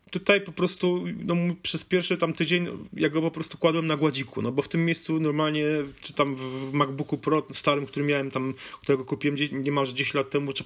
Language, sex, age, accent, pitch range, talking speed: Polish, male, 30-49, native, 140-170 Hz, 210 wpm